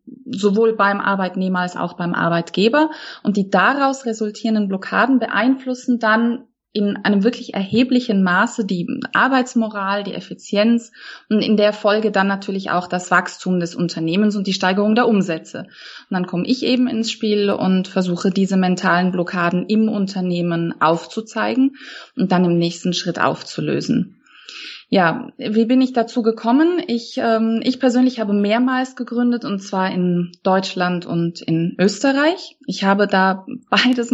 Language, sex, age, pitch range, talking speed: German, female, 20-39, 190-235 Hz, 145 wpm